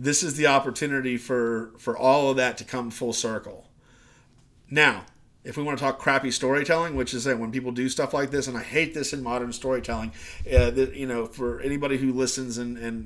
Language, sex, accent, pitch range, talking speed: English, male, American, 120-135 Hz, 215 wpm